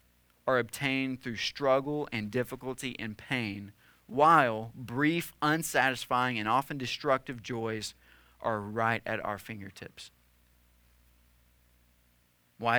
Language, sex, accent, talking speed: English, male, American, 100 wpm